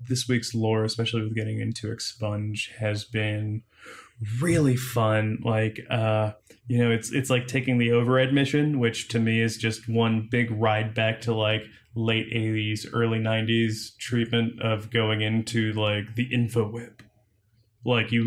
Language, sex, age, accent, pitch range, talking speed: English, male, 20-39, American, 110-125 Hz, 160 wpm